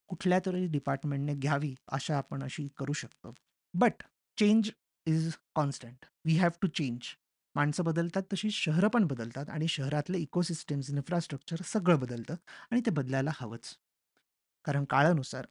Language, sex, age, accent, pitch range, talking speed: Marathi, male, 30-49, native, 135-170 Hz, 110 wpm